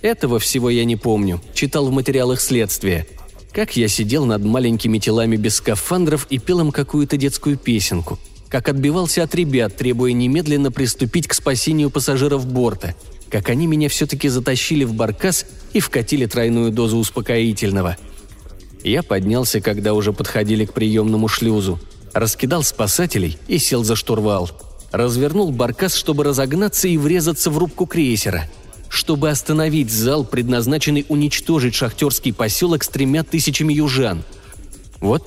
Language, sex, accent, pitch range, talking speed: Russian, male, native, 110-155 Hz, 140 wpm